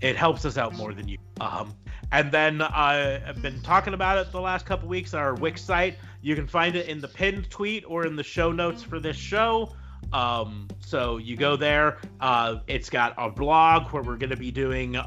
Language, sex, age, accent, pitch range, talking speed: English, male, 30-49, American, 120-160 Hz, 220 wpm